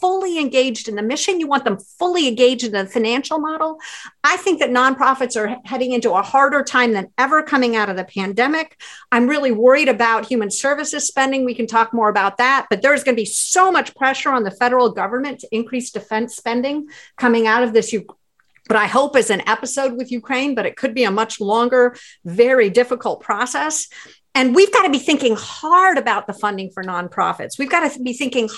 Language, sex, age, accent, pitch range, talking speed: English, female, 50-69, American, 225-280 Hz, 210 wpm